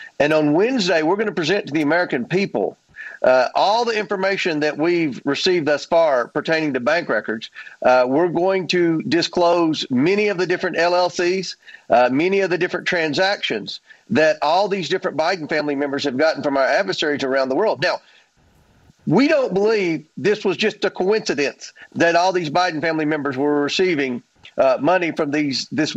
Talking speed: 180 wpm